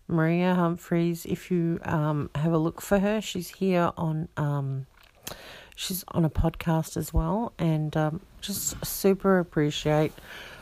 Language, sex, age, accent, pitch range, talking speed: English, female, 50-69, Australian, 155-195 Hz, 140 wpm